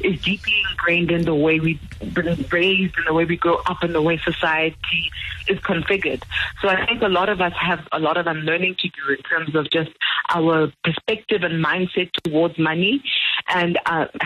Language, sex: English, female